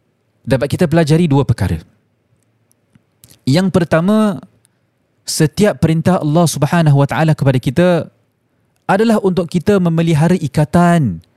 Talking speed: 95 wpm